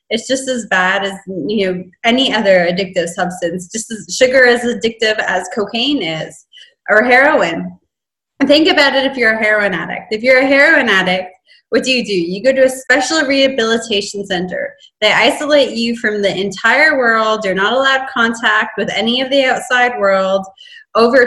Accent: American